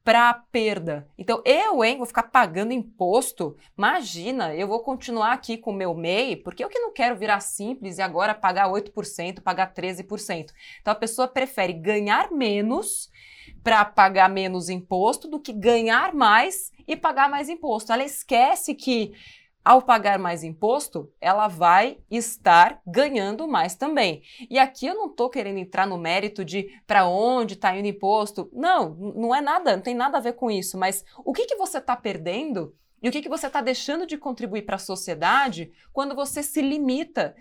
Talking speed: 180 wpm